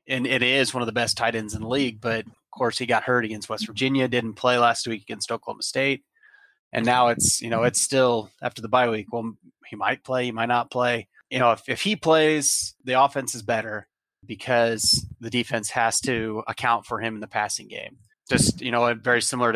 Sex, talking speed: male, 225 wpm